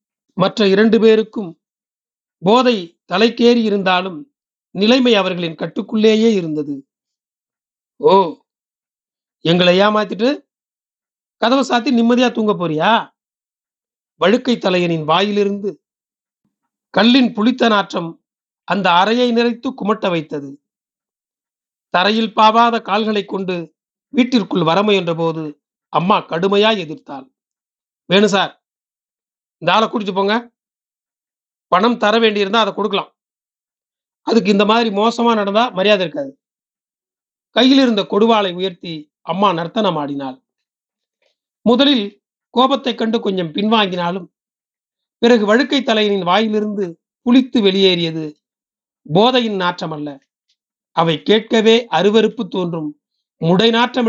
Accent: native